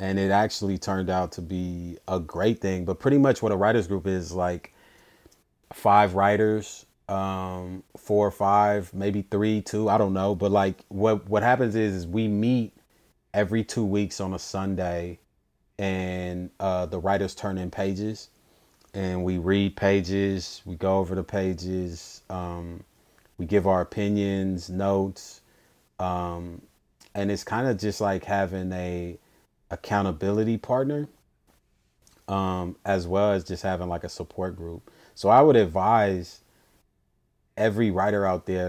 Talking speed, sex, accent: 150 wpm, male, American